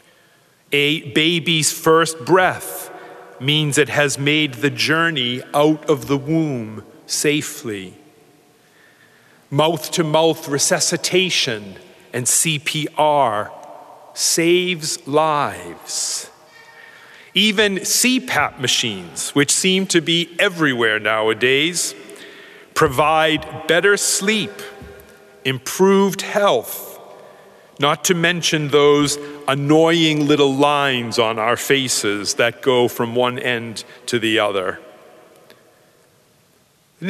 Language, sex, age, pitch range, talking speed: English, male, 40-59, 135-165 Hz, 85 wpm